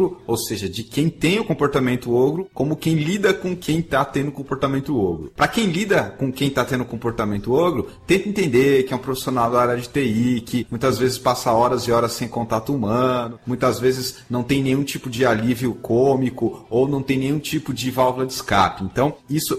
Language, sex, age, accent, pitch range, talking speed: English, male, 30-49, Brazilian, 120-155 Hz, 200 wpm